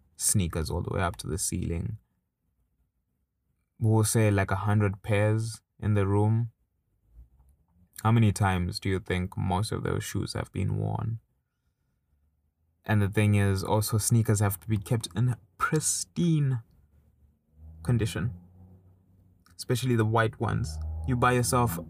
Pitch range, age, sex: 95-115 Hz, 20-39, male